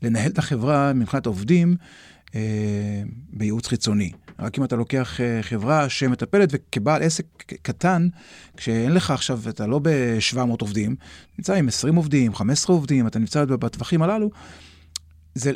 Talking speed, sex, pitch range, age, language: 135 wpm, male, 110-155 Hz, 30-49, Hebrew